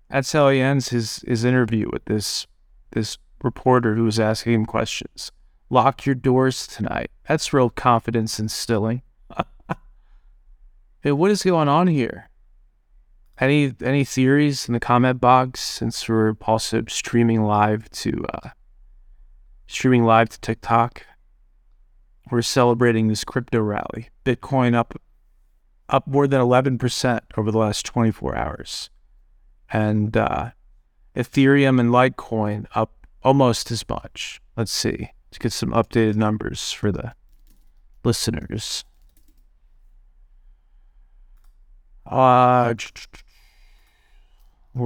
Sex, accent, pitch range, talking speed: male, American, 105-125 Hz, 115 wpm